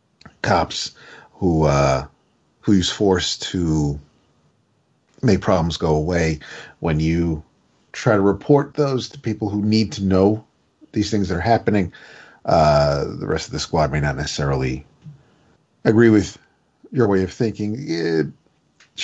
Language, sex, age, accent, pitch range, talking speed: English, male, 50-69, American, 85-115 Hz, 140 wpm